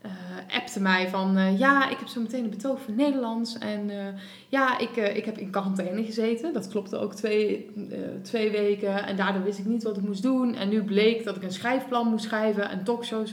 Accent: Dutch